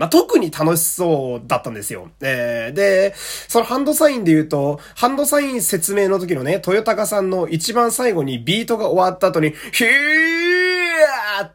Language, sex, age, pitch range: Japanese, male, 20-39, 145-225 Hz